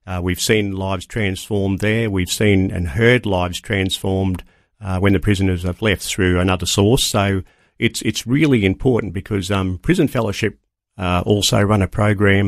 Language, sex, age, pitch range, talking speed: English, male, 50-69, 90-110 Hz, 170 wpm